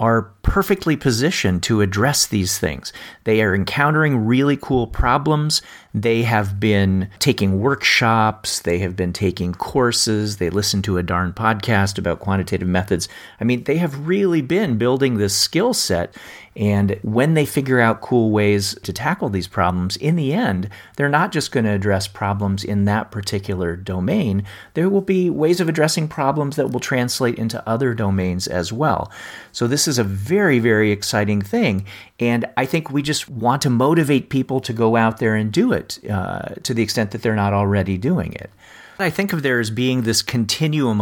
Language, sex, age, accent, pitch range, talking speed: English, male, 40-59, American, 100-135 Hz, 185 wpm